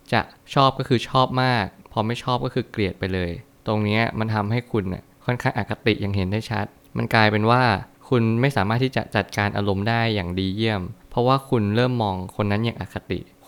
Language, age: Thai, 20-39